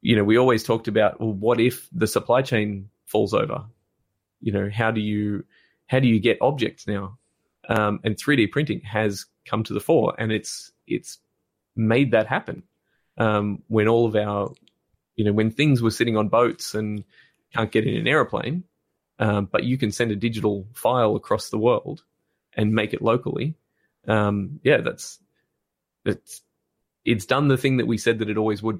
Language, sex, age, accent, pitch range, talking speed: English, male, 20-39, Australian, 105-115 Hz, 190 wpm